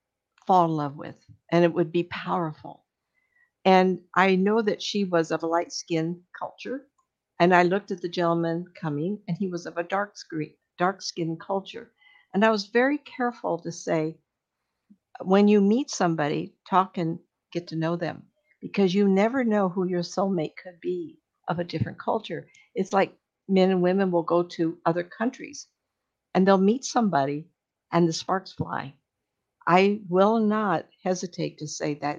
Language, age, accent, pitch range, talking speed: English, 60-79, American, 160-200 Hz, 170 wpm